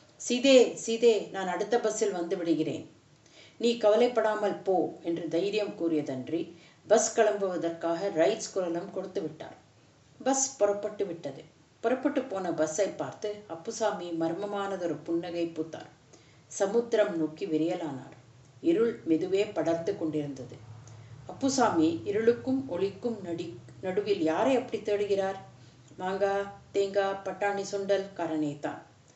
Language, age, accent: Tamil, 50-69, native